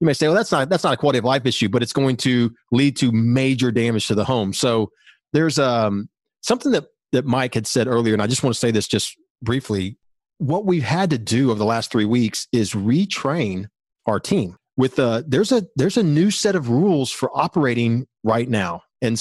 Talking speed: 225 wpm